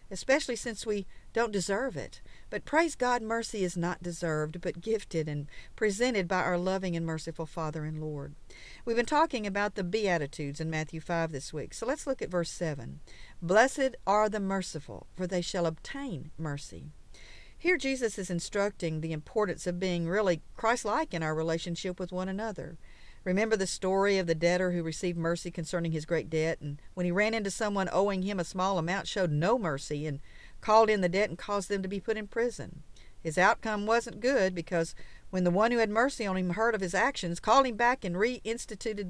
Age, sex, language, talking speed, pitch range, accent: 50-69, female, English, 200 wpm, 165-215 Hz, American